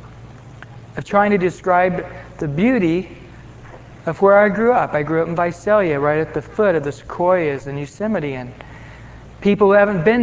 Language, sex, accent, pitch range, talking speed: English, male, American, 140-210 Hz, 175 wpm